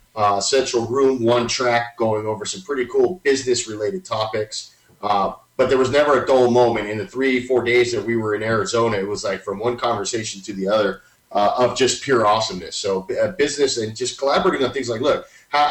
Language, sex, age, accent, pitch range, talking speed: English, male, 30-49, American, 105-130 Hz, 210 wpm